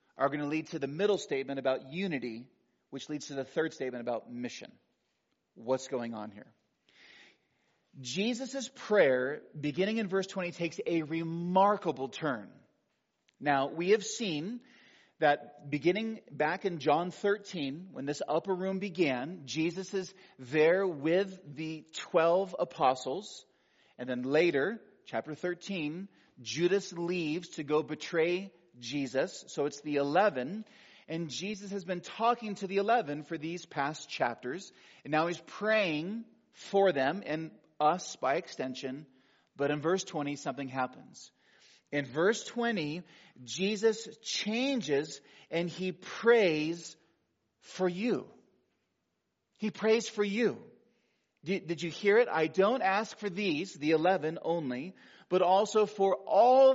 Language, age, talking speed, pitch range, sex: English, 30-49, 135 wpm, 145-200 Hz, male